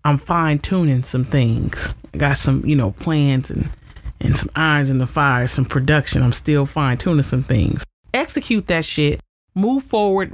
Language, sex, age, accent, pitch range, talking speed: English, male, 30-49, American, 150-195 Hz, 170 wpm